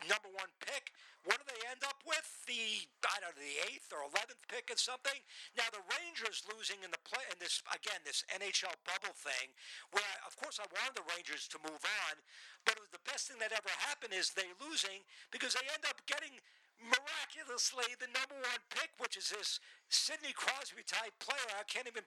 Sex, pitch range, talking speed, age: male, 205-285 Hz, 205 wpm, 50-69